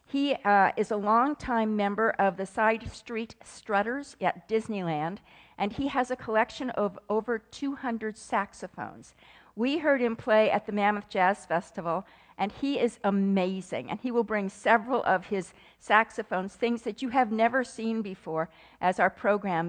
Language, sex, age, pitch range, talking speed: English, female, 50-69, 185-235 Hz, 160 wpm